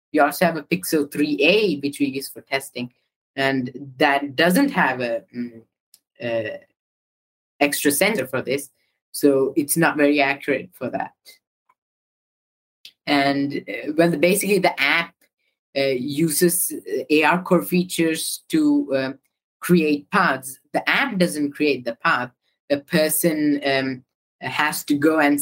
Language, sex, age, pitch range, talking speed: English, female, 20-39, 135-160 Hz, 130 wpm